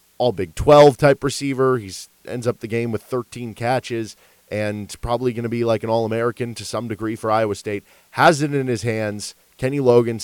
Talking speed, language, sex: 195 wpm, English, male